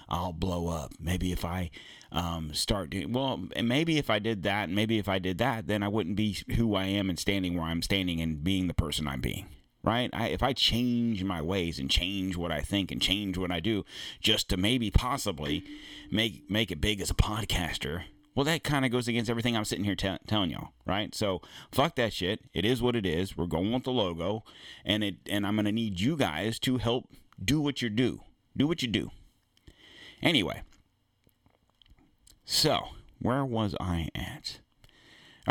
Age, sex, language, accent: 30-49, male, English, American